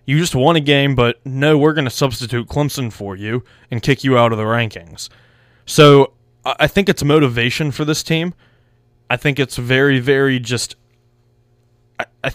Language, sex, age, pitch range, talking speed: English, male, 20-39, 120-140 Hz, 175 wpm